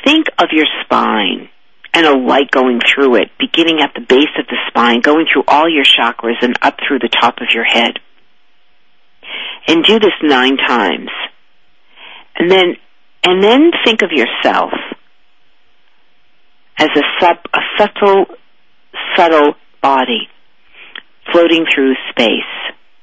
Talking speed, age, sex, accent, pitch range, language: 135 wpm, 50-69, female, American, 135-185 Hz, English